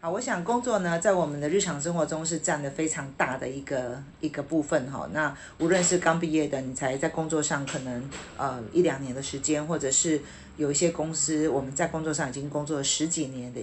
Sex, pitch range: female, 145-170 Hz